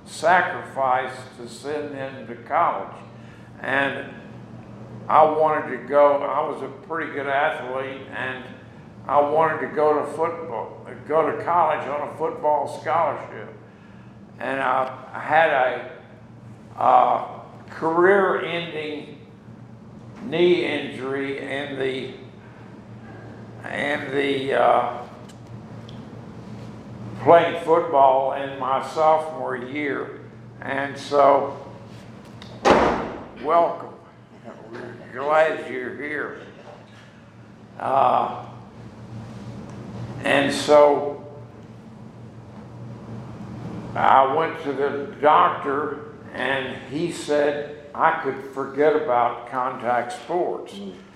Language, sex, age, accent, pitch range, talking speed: English, male, 60-79, American, 115-150 Hz, 85 wpm